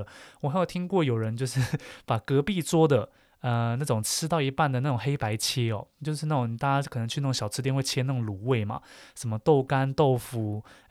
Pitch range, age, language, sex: 115-145 Hz, 20-39, Chinese, male